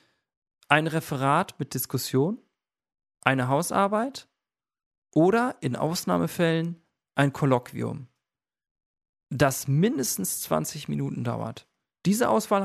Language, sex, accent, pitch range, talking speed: German, male, German, 130-160 Hz, 85 wpm